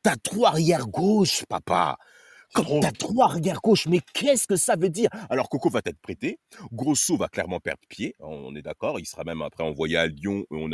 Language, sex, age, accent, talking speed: French, male, 30-49, French, 205 wpm